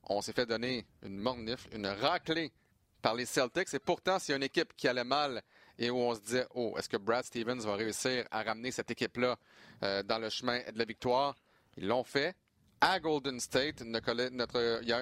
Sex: male